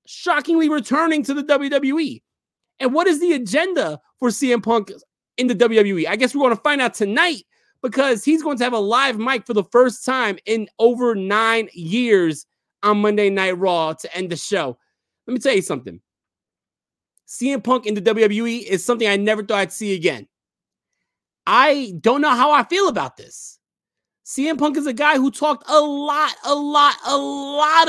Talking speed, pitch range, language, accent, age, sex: 185 wpm, 210-290 Hz, English, American, 30-49, male